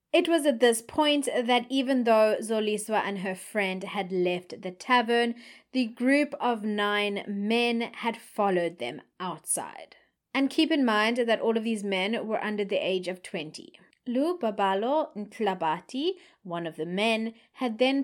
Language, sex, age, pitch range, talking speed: English, female, 20-39, 200-250 Hz, 165 wpm